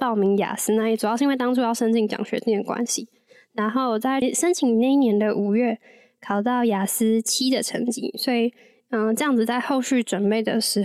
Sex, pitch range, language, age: female, 220-260 Hz, Chinese, 10-29